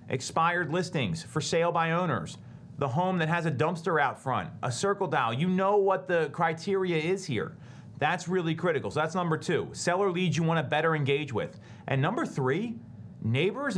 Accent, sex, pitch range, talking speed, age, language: American, male, 140-180 Hz, 185 wpm, 40-59, English